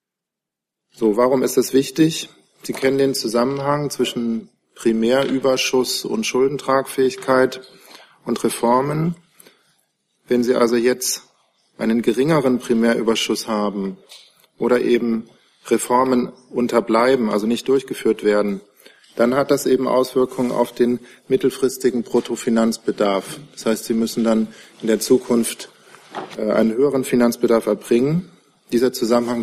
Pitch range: 115-130 Hz